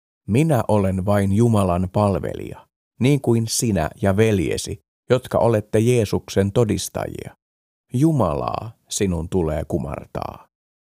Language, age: Finnish, 50-69